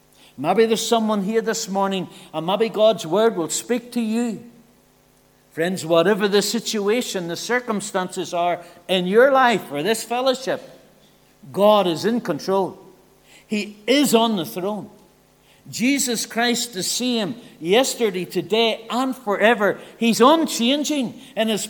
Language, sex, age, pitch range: English, male, 60-79, 175-235 Hz